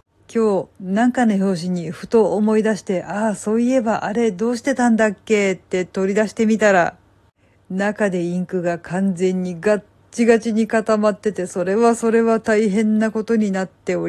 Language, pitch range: Japanese, 175-230 Hz